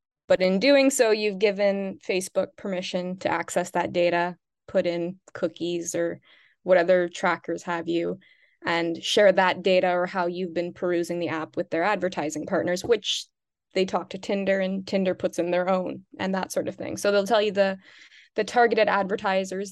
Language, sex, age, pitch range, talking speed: English, female, 20-39, 175-195 Hz, 185 wpm